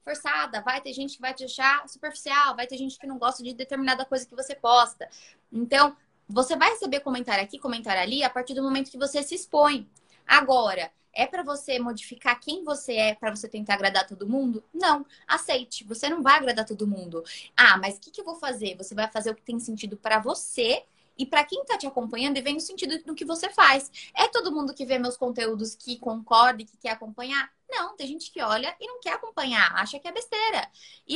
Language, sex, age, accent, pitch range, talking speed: Portuguese, female, 20-39, Brazilian, 230-290 Hz, 225 wpm